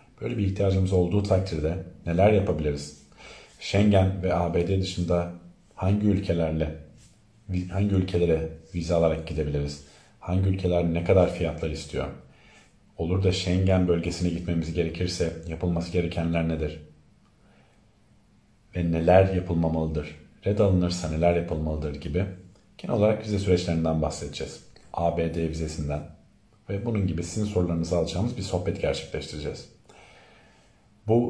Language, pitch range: English, 85-100 Hz